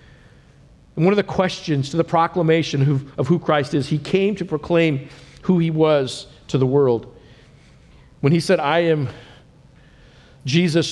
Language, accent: English, American